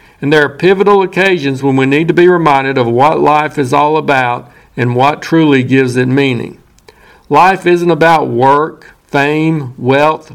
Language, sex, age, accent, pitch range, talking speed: English, male, 50-69, American, 135-165 Hz, 170 wpm